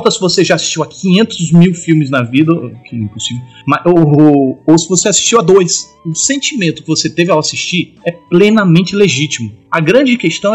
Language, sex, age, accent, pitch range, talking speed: Portuguese, male, 30-49, Brazilian, 140-215 Hz, 190 wpm